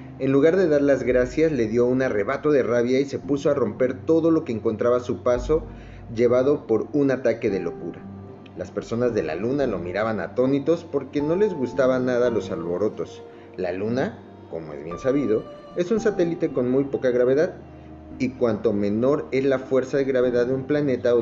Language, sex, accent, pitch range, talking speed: Spanish, male, Mexican, 100-140 Hz, 200 wpm